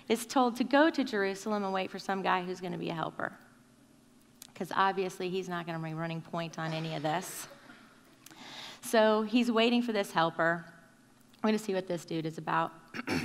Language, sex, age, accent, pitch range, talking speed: English, female, 30-49, American, 185-220 Hz, 205 wpm